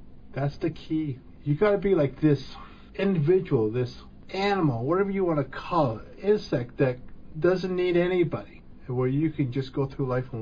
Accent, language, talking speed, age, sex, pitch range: American, English, 180 wpm, 50-69, male, 125-155 Hz